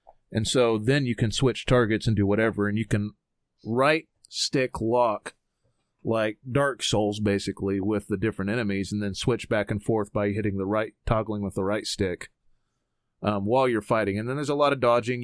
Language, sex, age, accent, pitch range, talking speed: English, male, 30-49, American, 105-130 Hz, 195 wpm